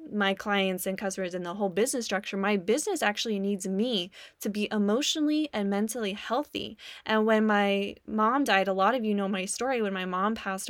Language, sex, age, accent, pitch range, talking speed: English, female, 10-29, American, 195-245 Hz, 200 wpm